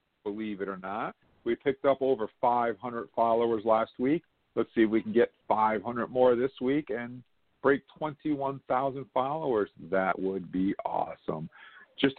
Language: English